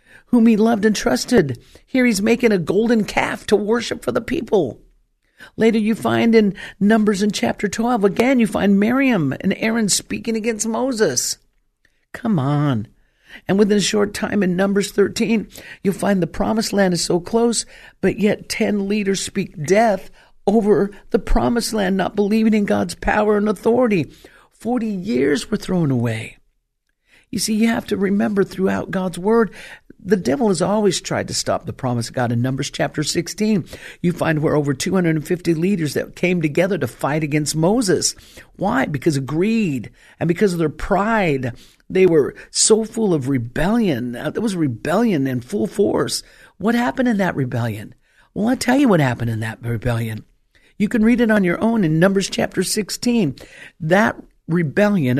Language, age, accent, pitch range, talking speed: English, 50-69, American, 160-220 Hz, 170 wpm